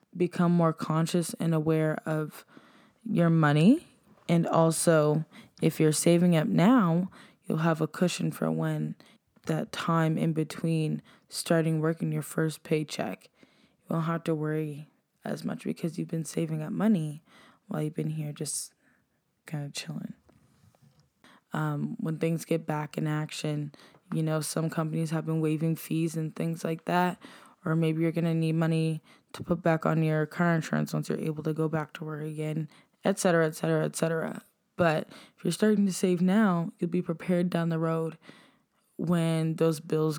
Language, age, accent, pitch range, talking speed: English, 10-29, American, 155-175 Hz, 170 wpm